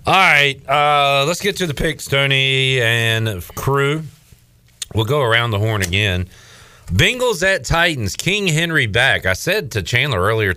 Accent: American